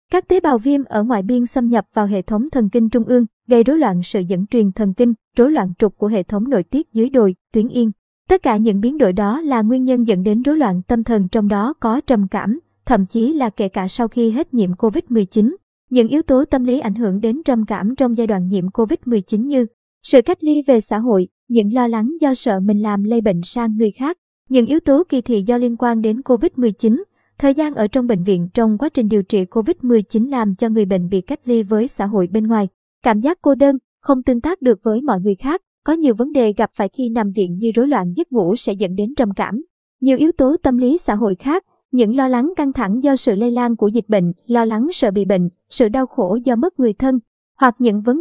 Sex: male